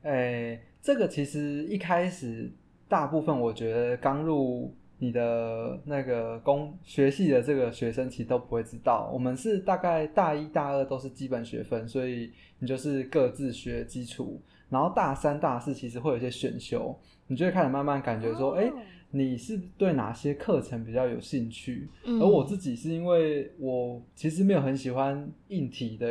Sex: male